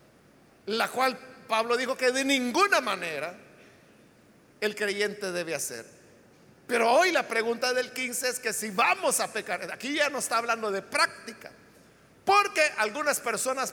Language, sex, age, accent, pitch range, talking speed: Spanish, male, 50-69, Mexican, 215-270 Hz, 150 wpm